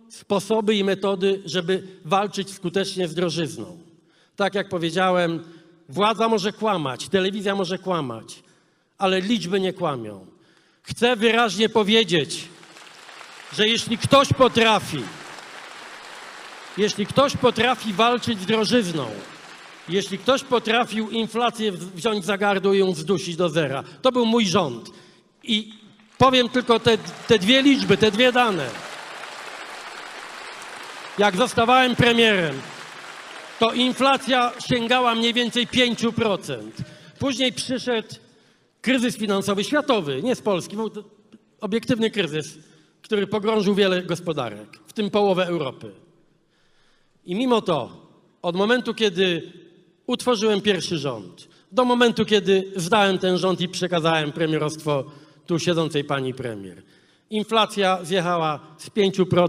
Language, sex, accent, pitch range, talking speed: Polish, male, native, 175-225 Hz, 115 wpm